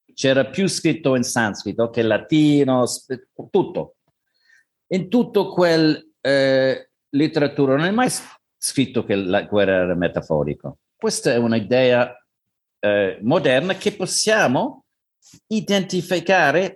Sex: male